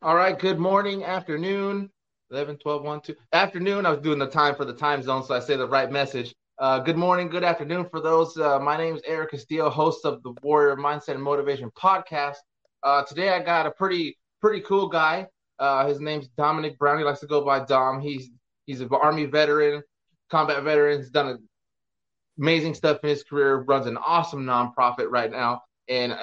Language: English